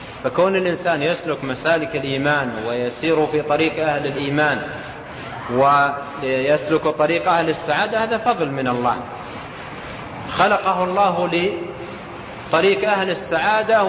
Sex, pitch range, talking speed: male, 135-175 Hz, 100 wpm